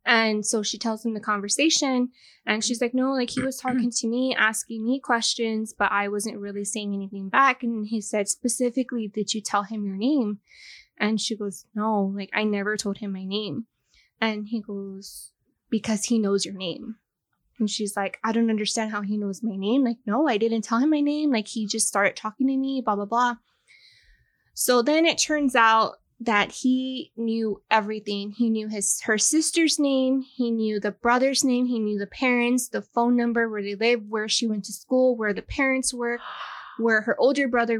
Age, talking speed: 10-29, 205 wpm